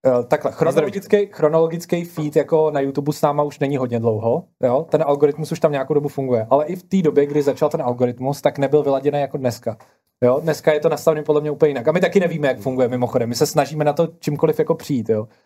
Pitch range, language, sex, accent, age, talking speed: 135-160 Hz, Czech, male, native, 20-39, 235 wpm